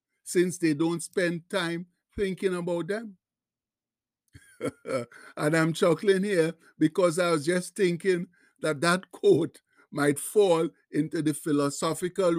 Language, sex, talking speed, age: English, male, 120 wpm, 60-79